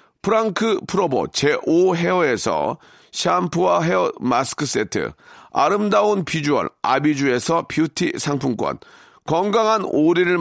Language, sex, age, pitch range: Korean, male, 40-59, 145-205 Hz